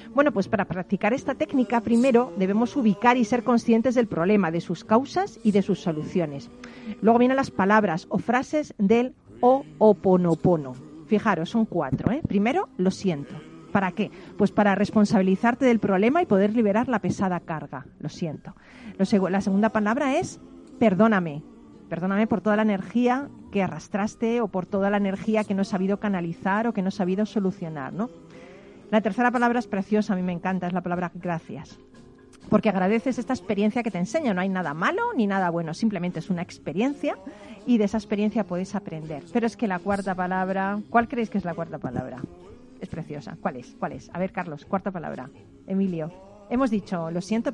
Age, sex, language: 40-59, female, Spanish